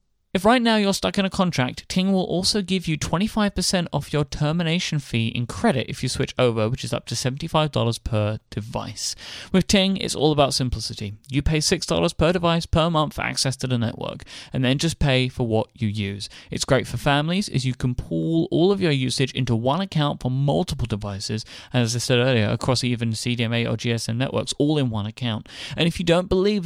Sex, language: male, English